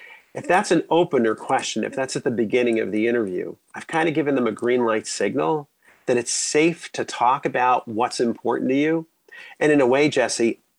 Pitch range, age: 115-155 Hz, 40-59